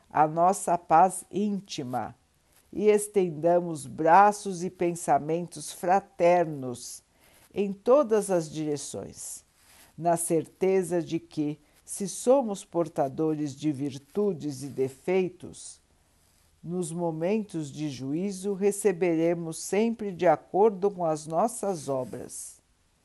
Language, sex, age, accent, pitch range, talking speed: Portuguese, female, 60-79, Brazilian, 145-195 Hz, 95 wpm